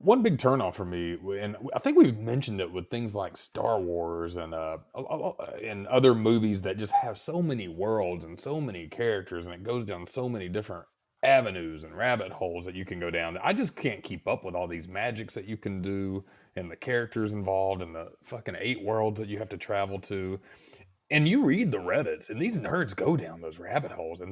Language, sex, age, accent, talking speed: English, male, 30-49, American, 220 wpm